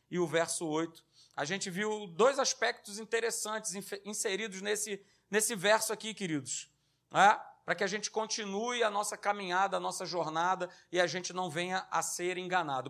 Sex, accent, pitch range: male, Brazilian, 185-245 Hz